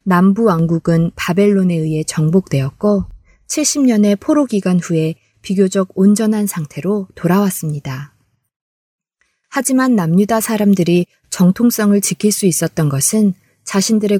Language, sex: Korean, female